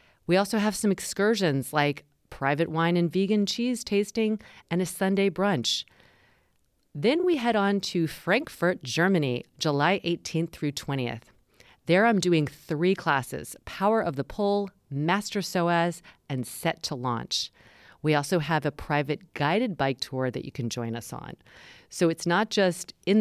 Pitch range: 145-190 Hz